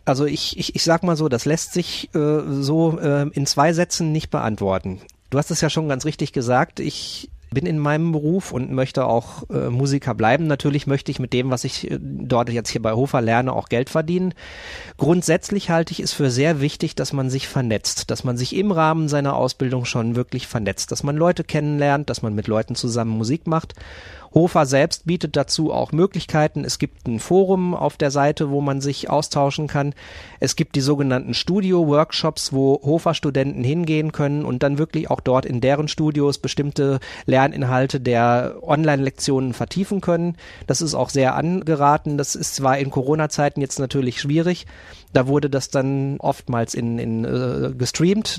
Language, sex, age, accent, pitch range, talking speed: German, male, 40-59, German, 130-155 Hz, 185 wpm